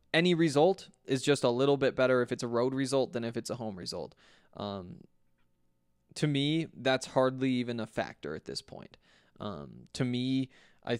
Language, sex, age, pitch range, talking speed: English, male, 20-39, 115-140 Hz, 185 wpm